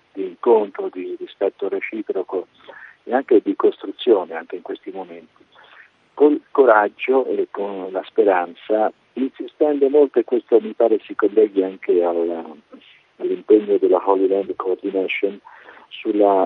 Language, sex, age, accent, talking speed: Italian, male, 50-69, native, 130 wpm